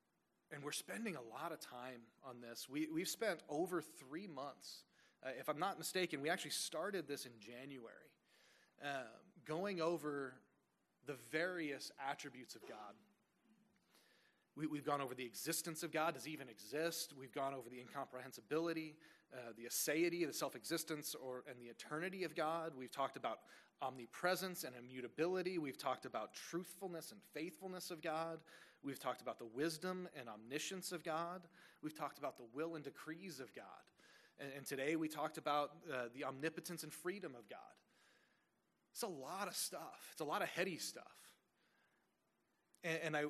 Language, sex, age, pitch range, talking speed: English, male, 30-49, 135-175 Hz, 165 wpm